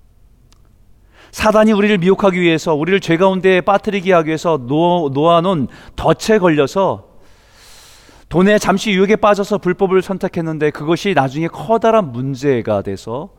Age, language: 40-59, Korean